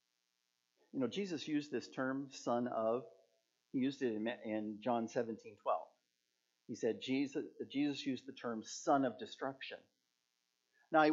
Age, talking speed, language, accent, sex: 50-69, 145 wpm, English, American, male